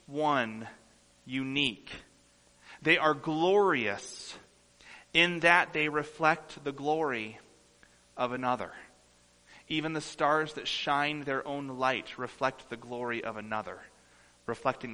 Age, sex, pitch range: 30-49, male, 95-135 Hz